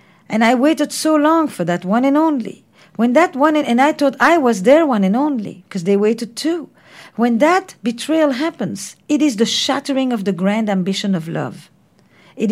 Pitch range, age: 200-265 Hz, 50-69